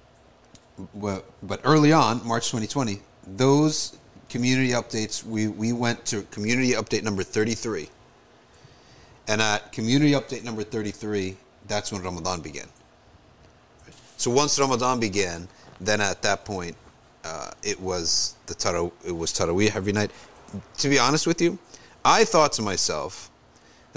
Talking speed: 130 wpm